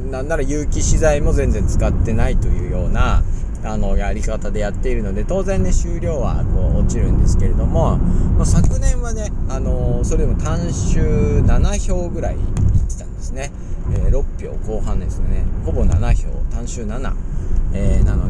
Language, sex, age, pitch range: Japanese, male, 40-59, 90-105 Hz